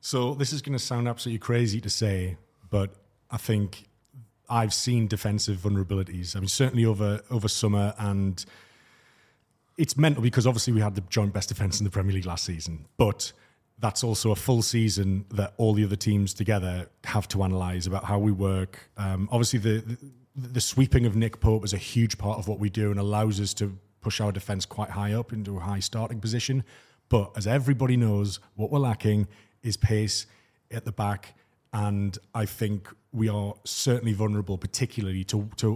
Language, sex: English, male